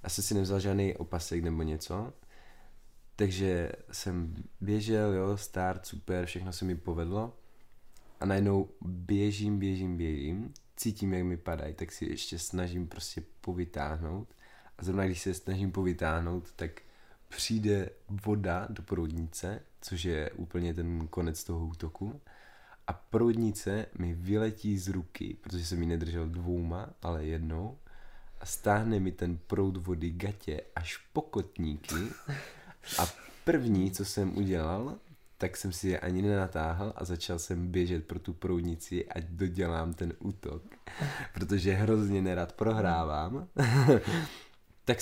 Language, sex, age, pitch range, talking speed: Czech, male, 20-39, 85-100 Hz, 135 wpm